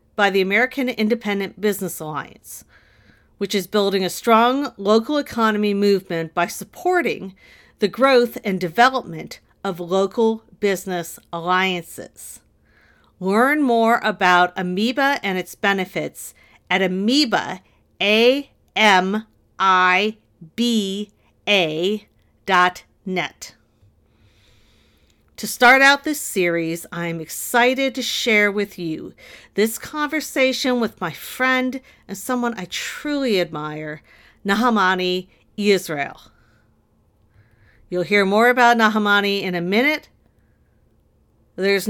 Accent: American